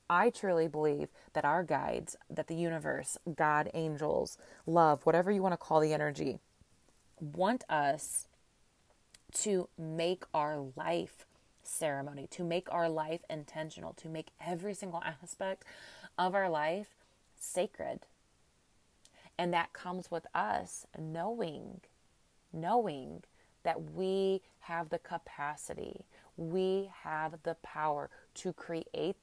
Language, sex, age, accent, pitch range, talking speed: English, female, 30-49, American, 155-185 Hz, 120 wpm